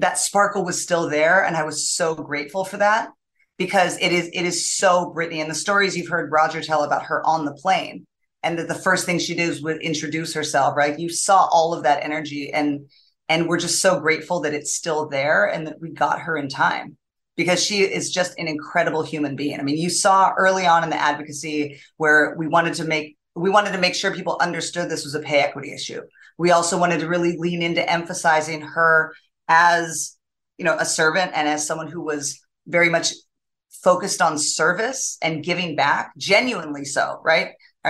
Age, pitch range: 30-49, 155-180 Hz